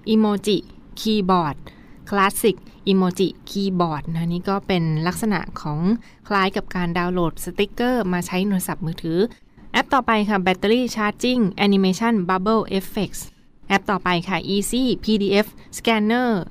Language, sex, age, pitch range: Thai, female, 20-39, 175-205 Hz